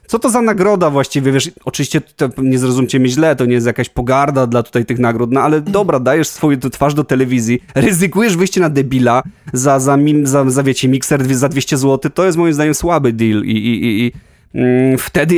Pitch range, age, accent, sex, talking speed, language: 120-145 Hz, 30-49, native, male, 210 wpm, Polish